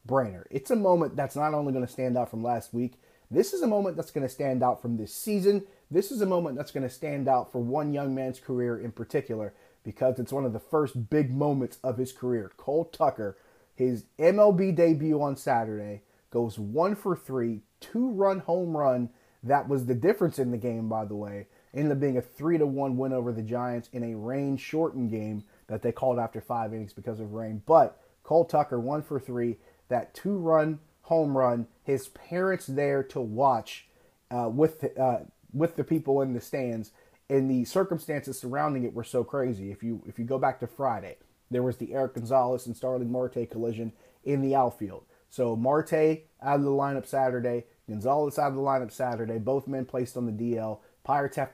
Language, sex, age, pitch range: English, male, 30-49, 120-145 Hz